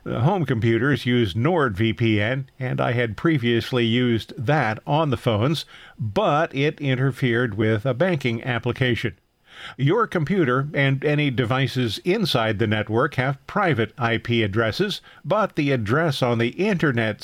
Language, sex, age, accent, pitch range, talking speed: English, male, 50-69, American, 115-145 Hz, 130 wpm